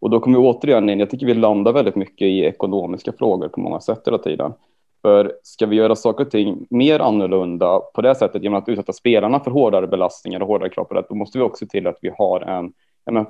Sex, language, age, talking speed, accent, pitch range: male, Swedish, 20-39, 245 wpm, native, 100-115 Hz